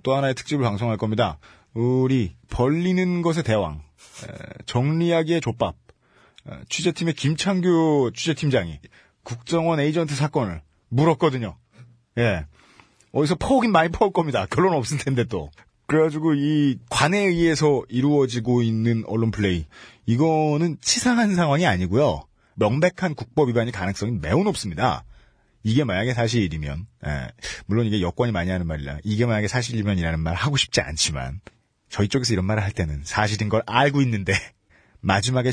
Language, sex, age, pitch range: Korean, male, 30-49, 100-160 Hz